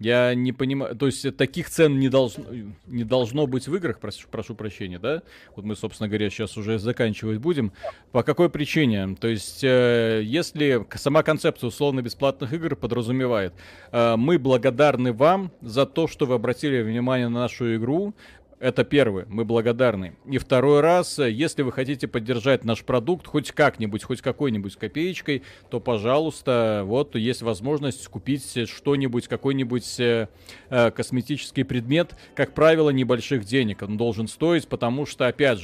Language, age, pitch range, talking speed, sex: Russian, 30-49, 115-150 Hz, 145 wpm, male